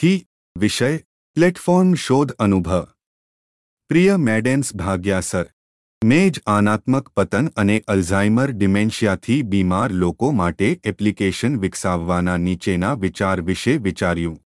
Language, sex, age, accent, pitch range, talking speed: Gujarati, male, 30-49, native, 90-120 Hz, 90 wpm